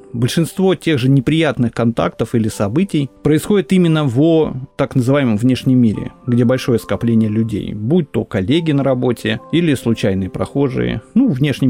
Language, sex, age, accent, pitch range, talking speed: Russian, male, 30-49, native, 110-155 Hz, 145 wpm